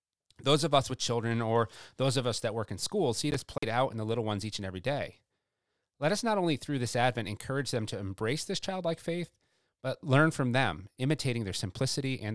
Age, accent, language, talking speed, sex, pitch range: 30-49, American, English, 230 wpm, male, 100-120 Hz